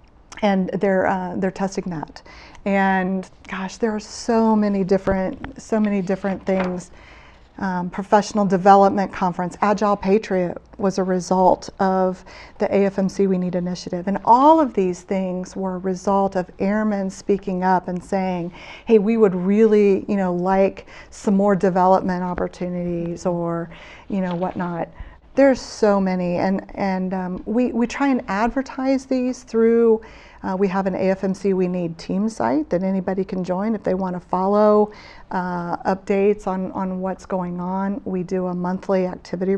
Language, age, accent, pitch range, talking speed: English, 40-59, American, 185-205 Hz, 155 wpm